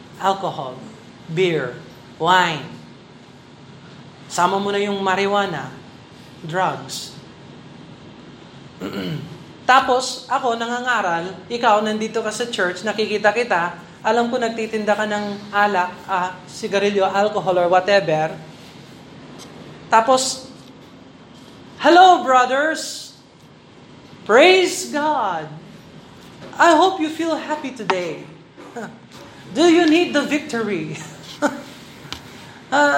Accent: native